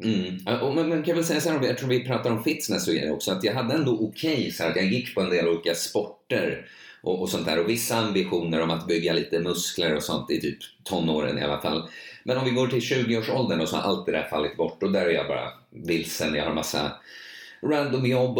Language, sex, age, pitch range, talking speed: Swedish, male, 30-49, 90-115 Hz, 245 wpm